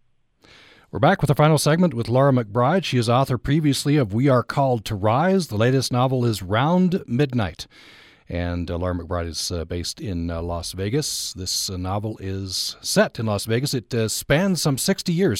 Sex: male